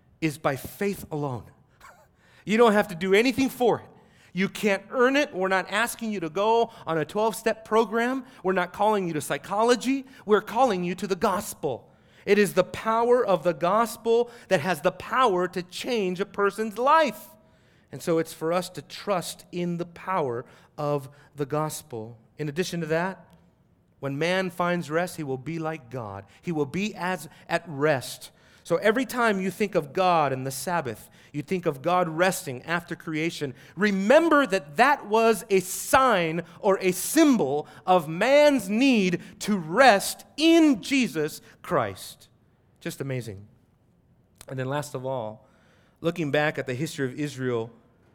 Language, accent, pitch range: English, American, 150-210 Hz